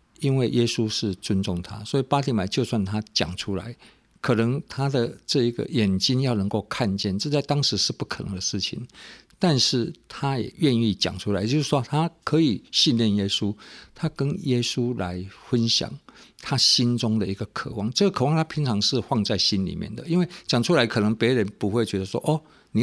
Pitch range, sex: 100-130 Hz, male